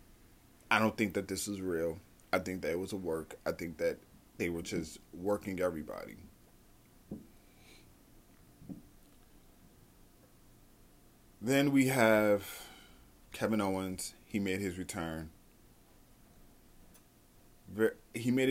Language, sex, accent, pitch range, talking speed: English, male, American, 85-115 Hz, 105 wpm